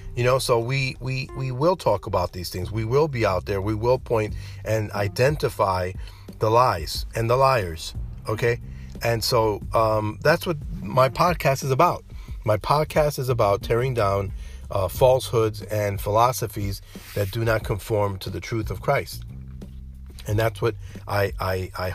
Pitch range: 95-115 Hz